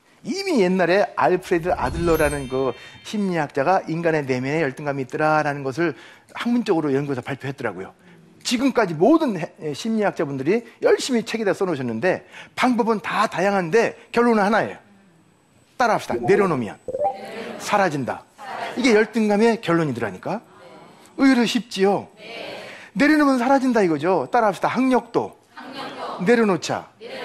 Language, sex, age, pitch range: Korean, male, 40-59, 160-245 Hz